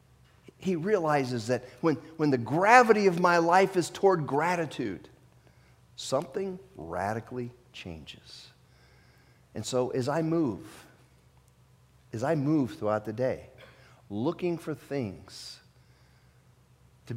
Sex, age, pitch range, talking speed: male, 50-69, 115-150 Hz, 110 wpm